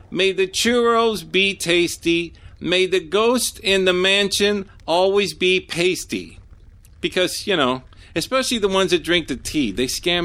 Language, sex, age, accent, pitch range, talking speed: English, male, 50-69, American, 125-205 Hz, 150 wpm